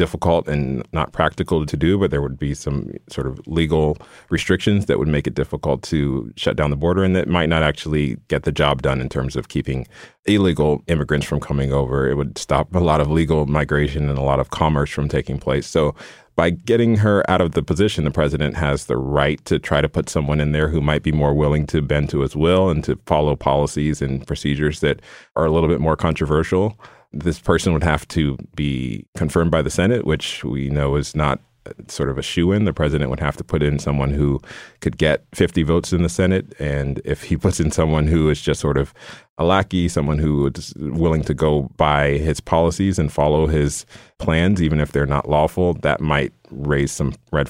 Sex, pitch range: male, 70-80 Hz